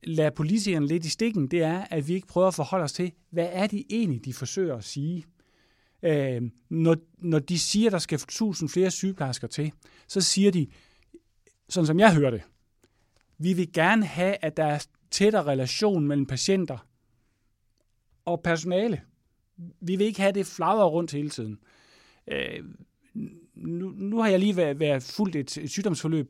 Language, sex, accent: English, male, Danish